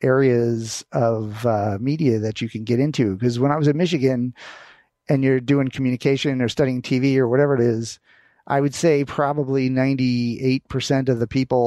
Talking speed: 175 wpm